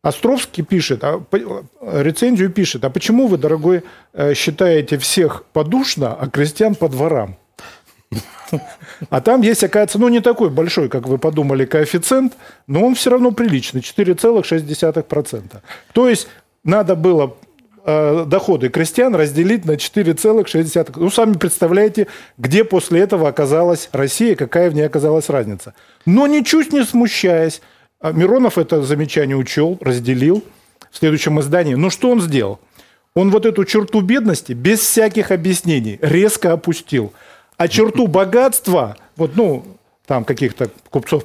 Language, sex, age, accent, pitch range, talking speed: Russian, male, 40-59, native, 145-210 Hz, 130 wpm